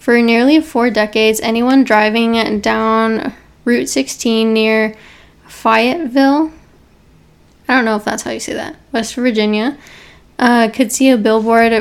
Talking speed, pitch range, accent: 135 wpm, 220-240 Hz, American